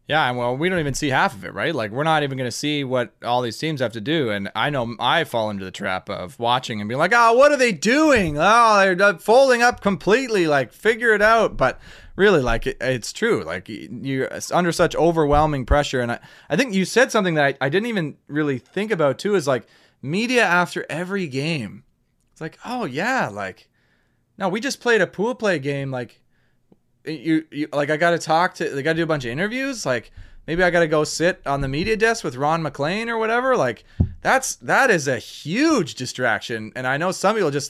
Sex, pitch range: male, 130-185 Hz